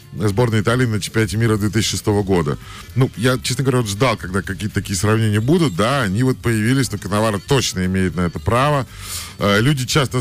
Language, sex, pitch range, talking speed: Russian, male, 95-130 Hz, 180 wpm